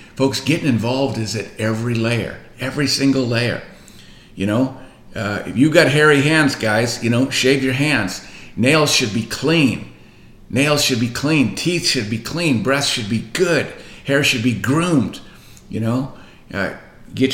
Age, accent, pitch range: 50-69, American, 120-145 Hz